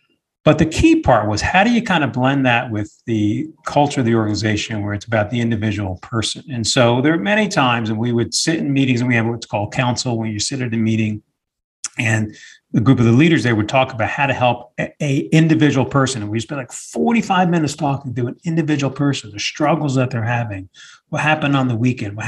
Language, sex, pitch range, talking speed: English, male, 115-155 Hz, 235 wpm